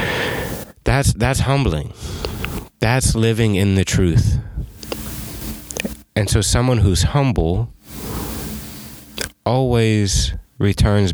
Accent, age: American, 30-49